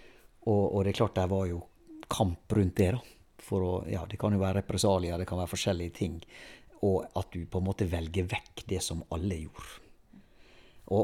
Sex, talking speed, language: male, 190 wpm, English